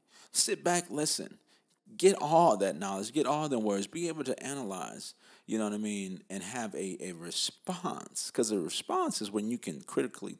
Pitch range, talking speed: 95-150 Hz, 190 wpm